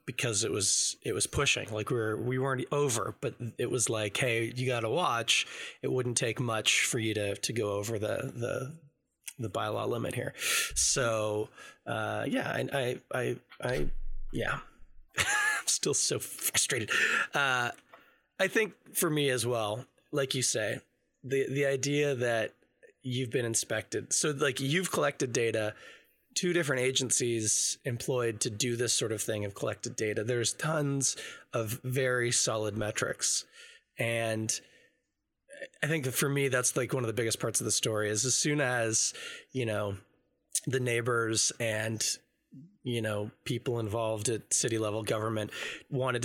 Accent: American